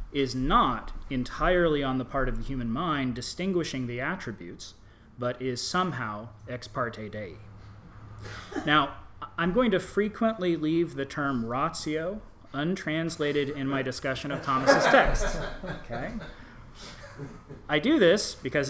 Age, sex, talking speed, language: 30-49, male, 130 wpm, English